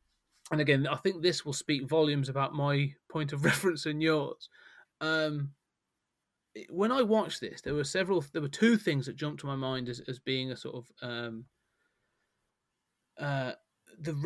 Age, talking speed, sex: 30-49, 170 wpm, male